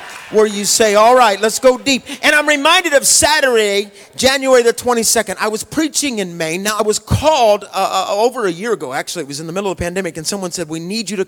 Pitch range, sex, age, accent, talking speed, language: 170-225 Hz, male, 40-59, American, 250 wpm, English